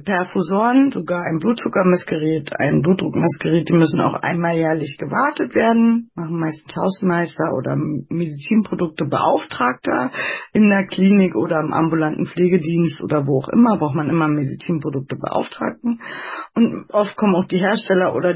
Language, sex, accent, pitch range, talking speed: German, female, German, 160-220 Hz, 135 wpm